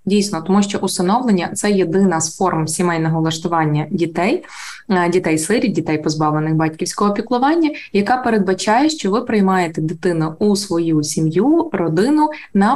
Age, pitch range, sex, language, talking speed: 20-39, 165-215 Hz, female, Ukrainian, 130 wpm